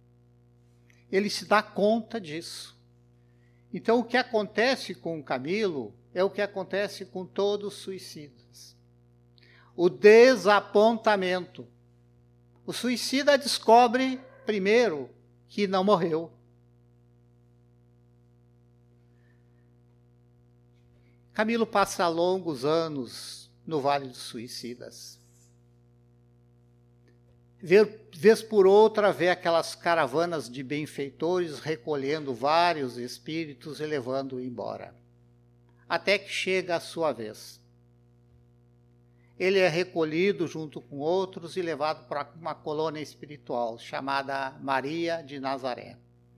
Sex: male